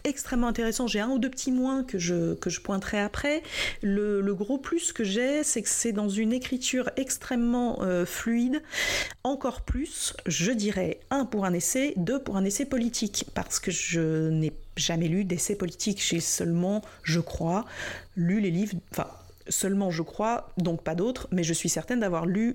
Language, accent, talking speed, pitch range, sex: French, French, 185 wpm, 170-240 Hz, female